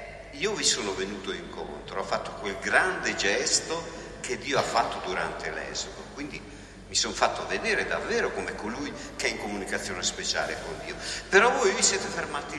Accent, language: native, Italian